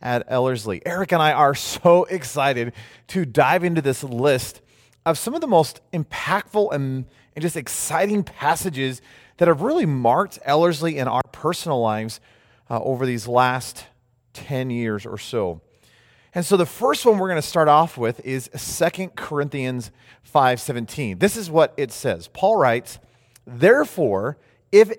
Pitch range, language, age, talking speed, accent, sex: 125-175 Hz, English, 30-49, 155 wpm, American, male